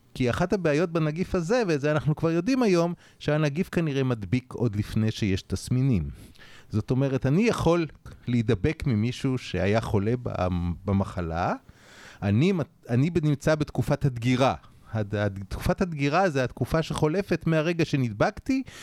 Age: 30-49